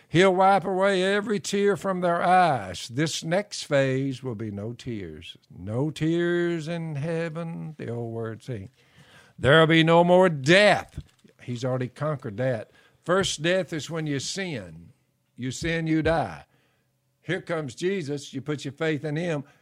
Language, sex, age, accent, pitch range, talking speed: English, male, 60-79, American, 130-180 Hz, 160 wpm